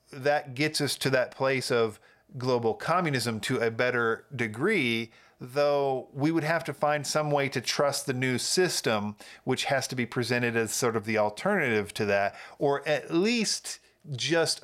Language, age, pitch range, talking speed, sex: English, 40-59, 110-140 Hz, 170 wpm, male